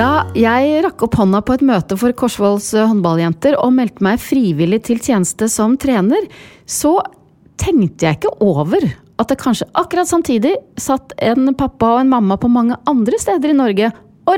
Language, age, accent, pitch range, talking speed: English, 40-59, Swedish, 165-250 Hz, 170 wpm